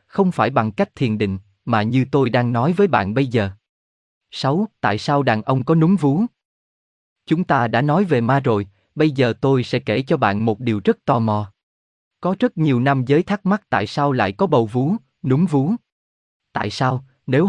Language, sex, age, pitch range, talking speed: Vietnamese, male, 20-39, 110-155 Hz, 205 wpm